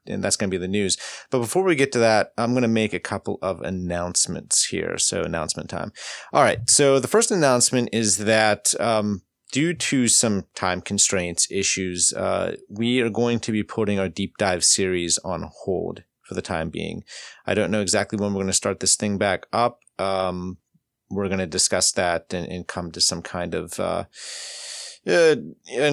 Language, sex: English, male